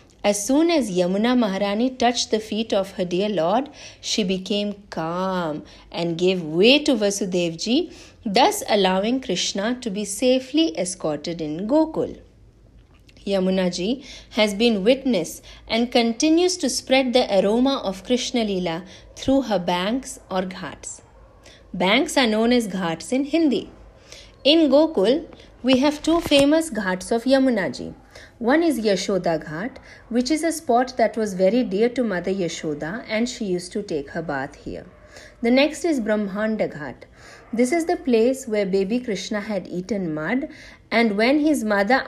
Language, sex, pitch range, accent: English, female, 195-265 Hz, Indian